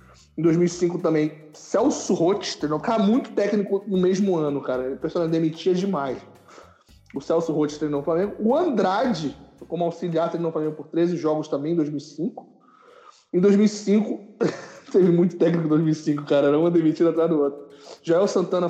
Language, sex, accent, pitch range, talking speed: Portuguese, male, Brazilian, 145-180 Hz, 165 wpm